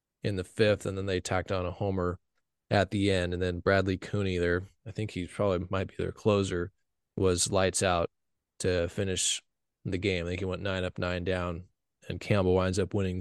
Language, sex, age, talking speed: English, male, 20-39, 205 wpm